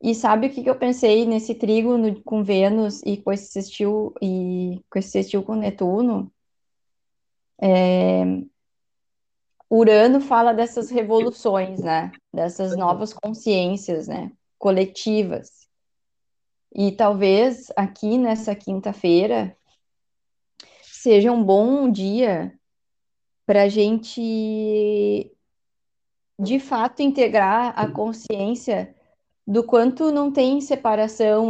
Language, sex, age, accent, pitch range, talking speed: Portuguese, female, 20-39, Brazilian, 195-230 Hz, 105 wpm